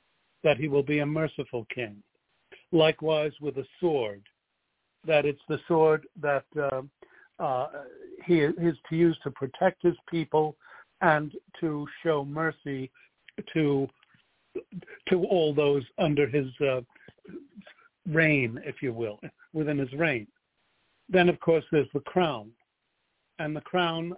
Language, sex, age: English, male, 60-79